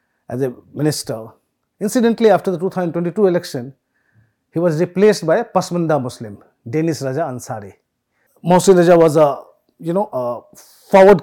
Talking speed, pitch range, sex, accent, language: 140 wpm, 150-210 Hz, male, Indian, English